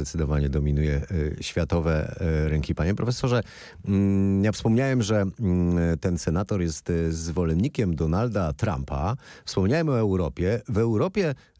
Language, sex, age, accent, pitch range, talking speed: Polish, male, 30-49, native, 85-120 Hz, 105 wpm